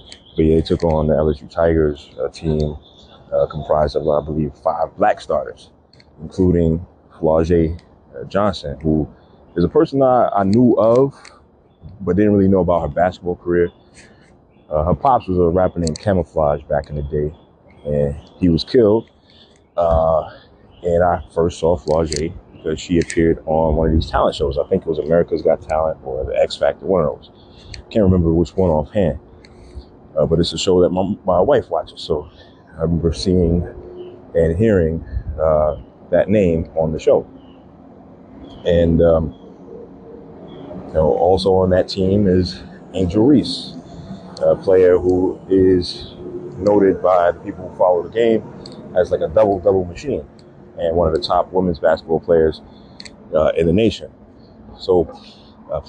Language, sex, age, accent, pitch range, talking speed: English, male, 30-49, American, 80-95 Hz, 160 wpm